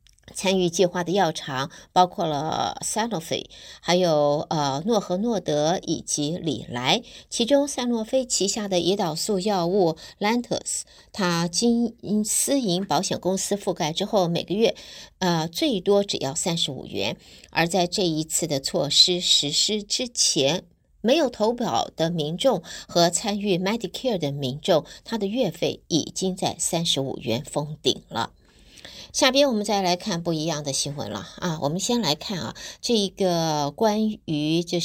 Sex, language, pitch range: female, Chinese, 155-210 Hz